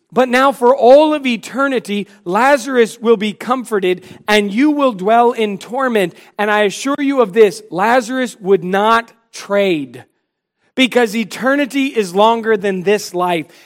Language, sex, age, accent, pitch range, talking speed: English, male, 40-59, American, 185-245 Hz, 145 wpm